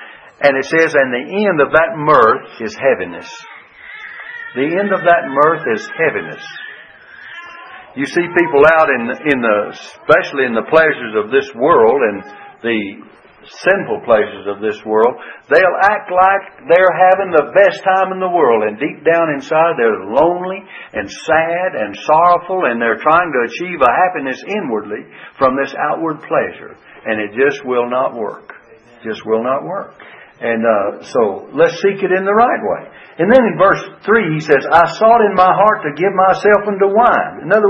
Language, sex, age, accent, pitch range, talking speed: English, male, 60-79, American, 140-205 Hz, 180 wpm